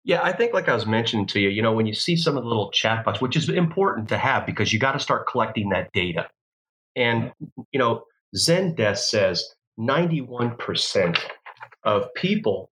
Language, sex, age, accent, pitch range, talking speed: English, male, 30-49, American, 105-135 Hz, 190 wpm